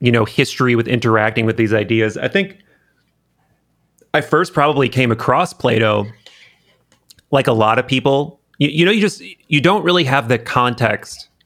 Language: English